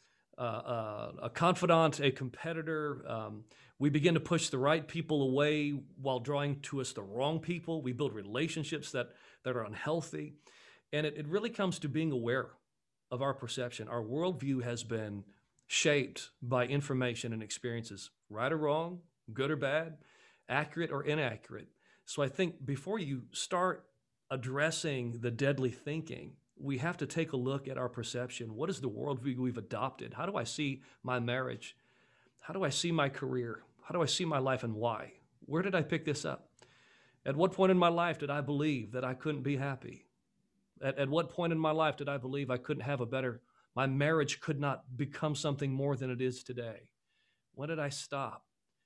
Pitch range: 125-155 Hz